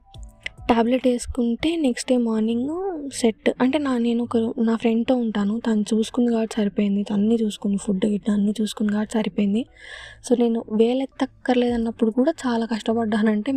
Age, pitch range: 20-39, 215-245 Hz